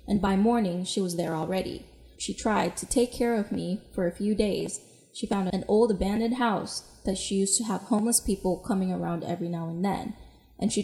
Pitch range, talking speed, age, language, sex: 180-225 Hz, 215 wpm, 20-39, English, female